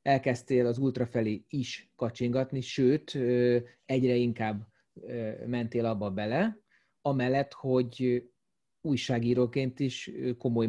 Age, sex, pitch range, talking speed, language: 30-49, male, 120-150 Hz, 90 wpm, Hungarian